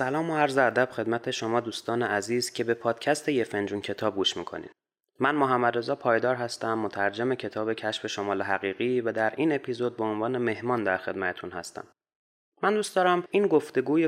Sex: male